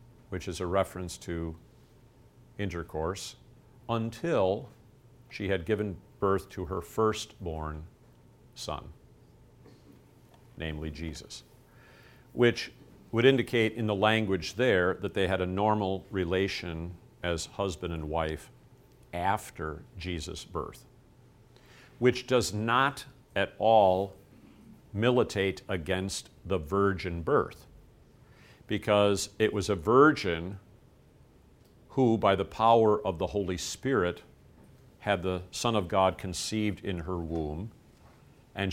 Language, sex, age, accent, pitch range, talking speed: English, male, 50-69, American, 90-115 Hz, 110 wpm